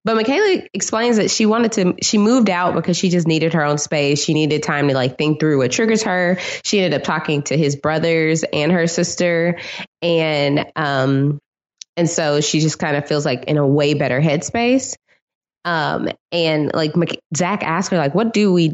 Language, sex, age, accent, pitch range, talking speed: English, female, 20-39, American, 150-190 Hz, 200 wpm